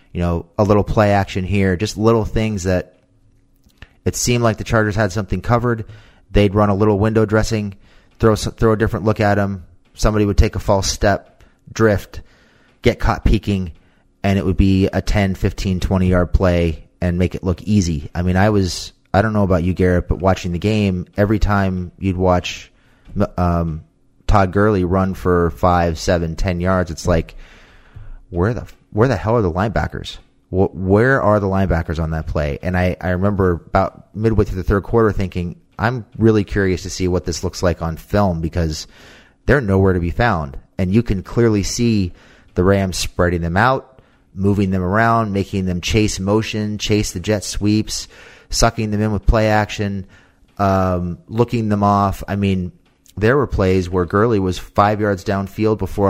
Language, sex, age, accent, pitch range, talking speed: English, male, 30-49, American, 90-105 Hz, 185 wpm